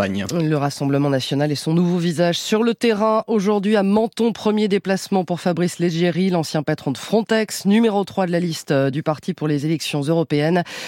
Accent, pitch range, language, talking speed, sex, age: French, 165-220 Hz, French, 180 wpm, female, 20-39